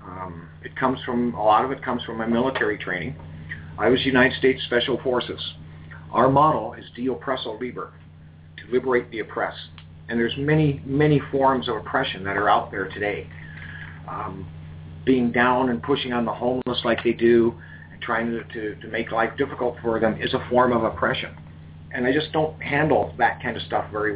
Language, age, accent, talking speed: English, 40-59, American, 185 wpm